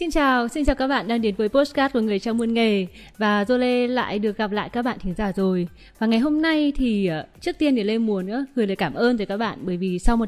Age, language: 20-39, Vietnamese